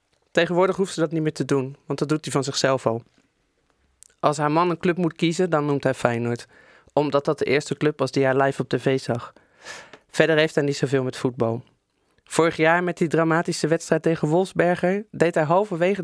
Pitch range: 135-170 Hz